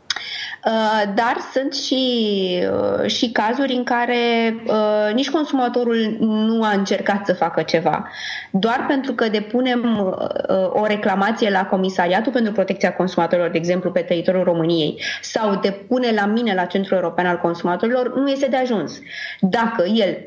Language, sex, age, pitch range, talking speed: Romanian, female, 20-39, 195-240 Hz, 135 wpm